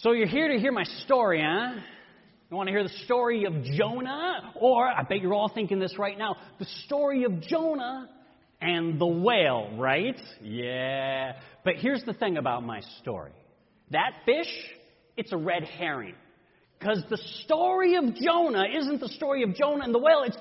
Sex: male